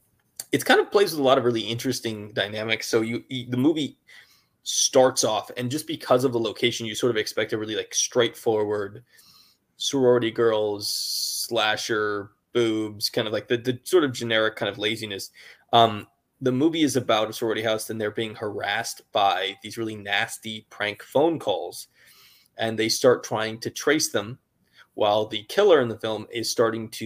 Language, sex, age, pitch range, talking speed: English, male, 20-39, 110-130 Hz, 180 wpm